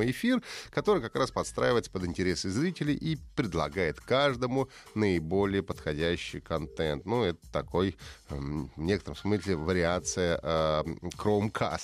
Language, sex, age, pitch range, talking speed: Russian, male, 30-49, 90-115 Hz, 105 wpm